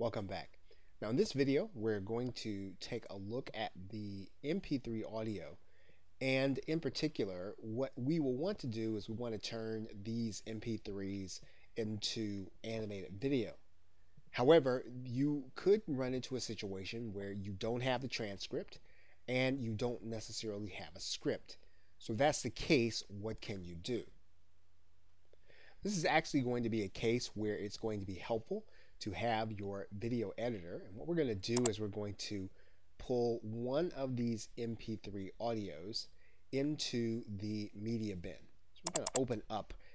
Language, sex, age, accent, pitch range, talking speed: English, male, 30-49, American, 95-120 Hz, 165 wpm